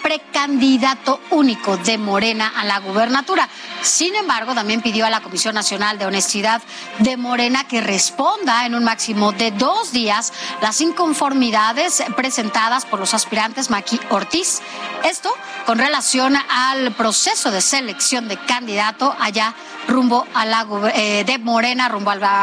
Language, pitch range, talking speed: Spanish, 210-265 Hz, 145 wpm